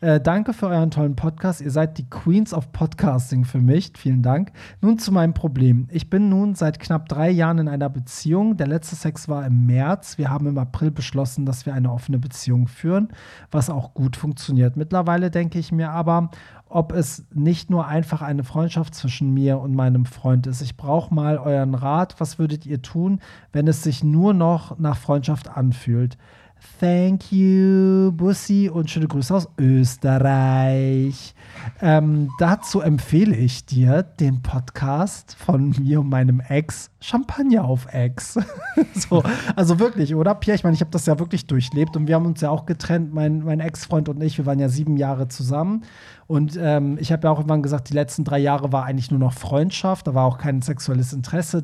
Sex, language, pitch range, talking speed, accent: male, German, 135-170 Hz, 190 wpm, German